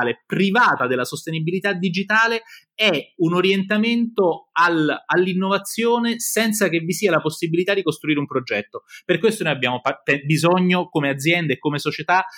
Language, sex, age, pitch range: Italian, male, 30-49, 155-210 Hz